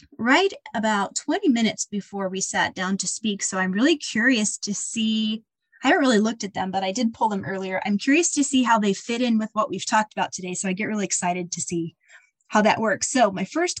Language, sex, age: English, female, 20-39